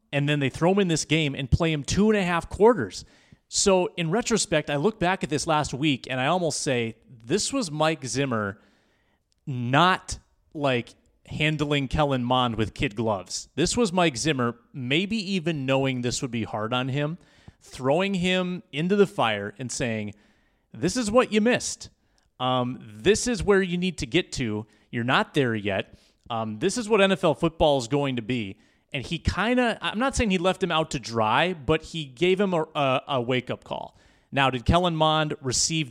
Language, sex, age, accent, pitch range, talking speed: English, male, 30-49, American, 125-170 Hz, 195 wpm